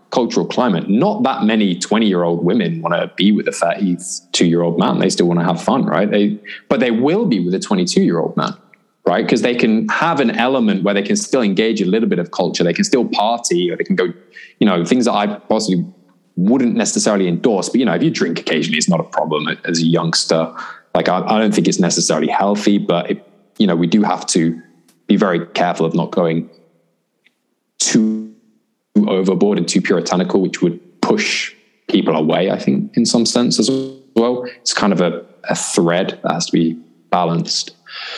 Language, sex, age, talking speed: English, male, 20-39, 210 wpm